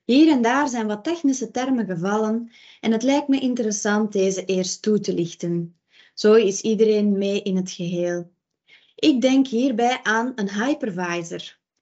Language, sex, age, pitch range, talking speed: Dutch, female, 20-39, 195-265 Hz, 155 wpm